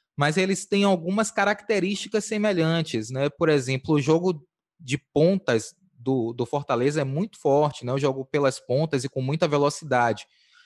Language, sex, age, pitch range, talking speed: Portuguese, male, 20-39, 130-170 Hz, 160 wpm